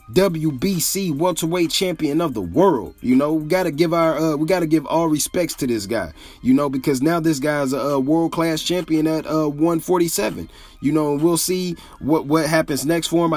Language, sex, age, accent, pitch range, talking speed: English, male, 30-49, American, 140-165 Hz, 195 wpm